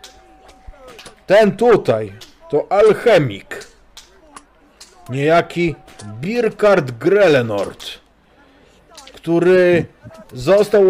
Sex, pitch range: male, 115-150 Hz